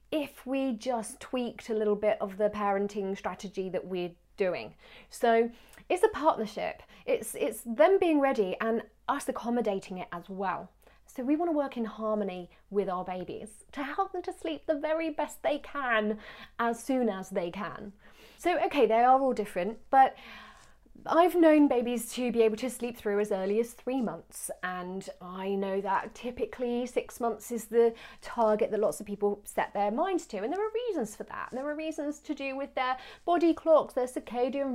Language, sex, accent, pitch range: English, female, British, 210-290 Hz